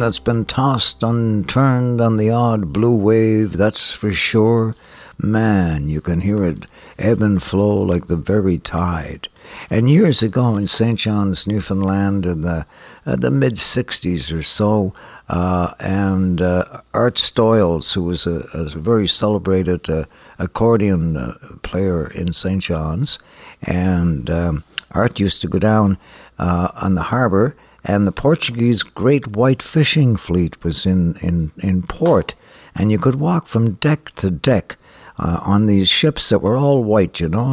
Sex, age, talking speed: male, 60-79, 155 wpm